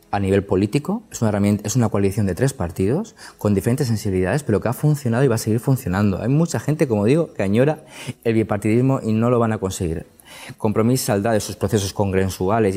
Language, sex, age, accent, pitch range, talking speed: Spanish, male, 20-39, Spanish, 100-125 Hz, 210 wpm